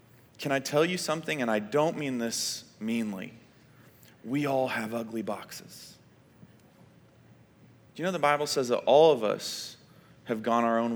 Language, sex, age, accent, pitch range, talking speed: English, male, 30-49, American, 120-165 Hz, 165 wpm